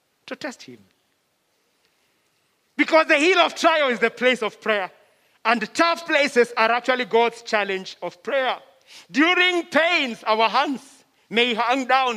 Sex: male